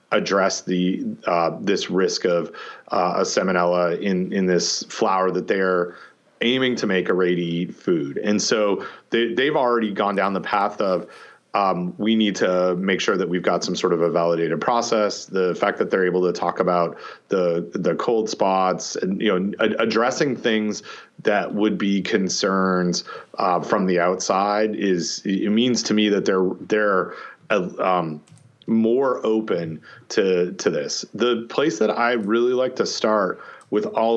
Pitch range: 90-110 Hz